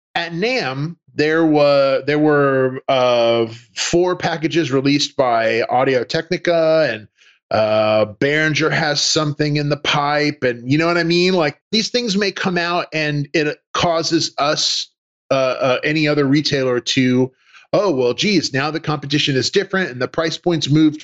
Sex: male